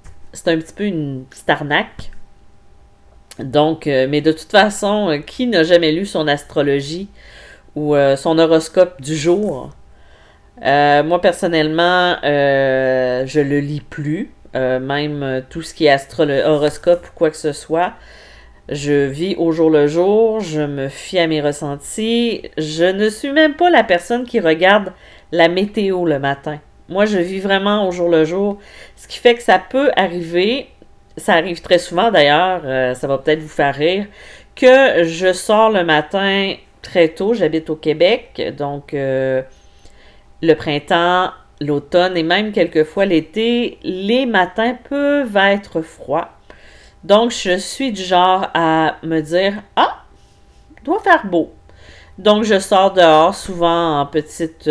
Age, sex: 40-59, female